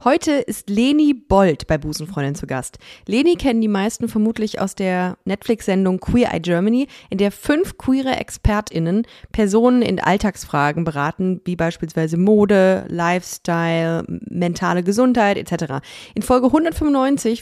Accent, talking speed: German, 130 wpm